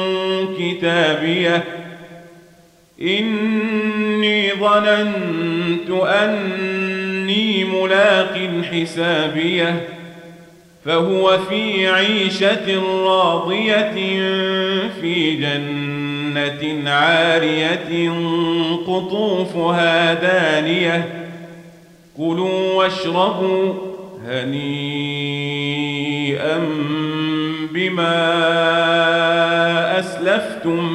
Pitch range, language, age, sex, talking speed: 165-190 Hz, Arabic, 40-59, male, 35 wpm